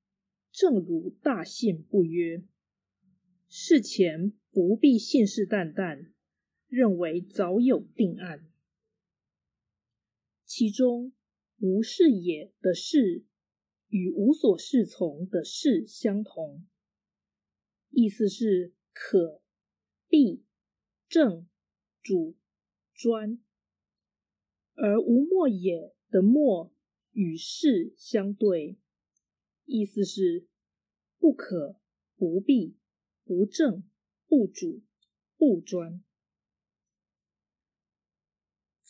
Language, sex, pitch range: Chinese, female, 175-245 Hz